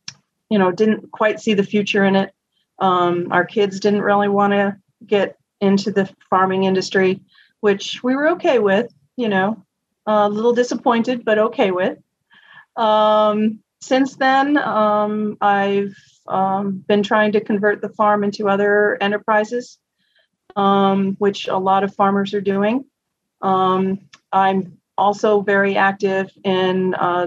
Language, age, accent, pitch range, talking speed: English, 40-59, American, 195-215 Hz, 140 wpm